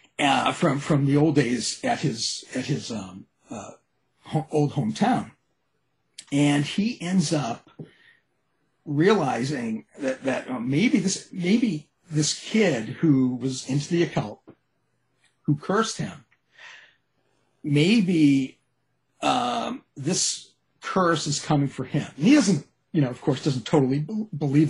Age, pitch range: 50-69, 135-165 Hz